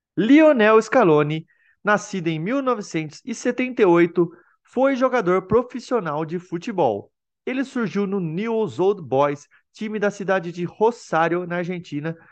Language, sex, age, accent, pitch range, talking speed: Portuguese, male, 20-39, Brazilian, 165-230 Hz, 110 wpm